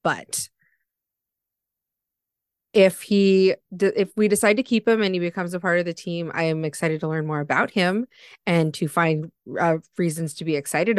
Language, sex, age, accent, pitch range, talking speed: English, female, 20-39, American, 160-200 Hz, 180 wpm